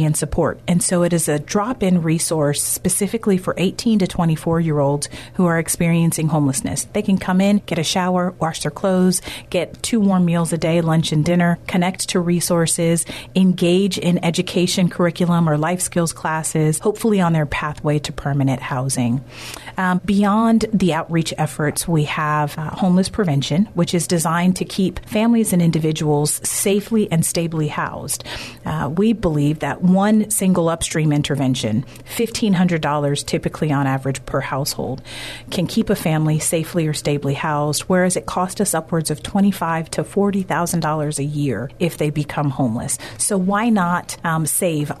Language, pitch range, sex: English, 150-185 Hz, female